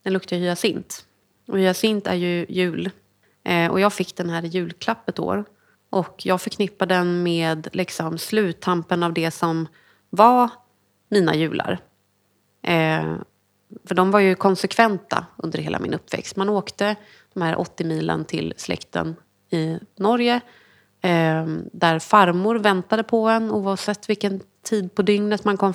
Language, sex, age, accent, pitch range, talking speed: Swedish, female, 30-49, native, 170-205 Hz, 135 wpm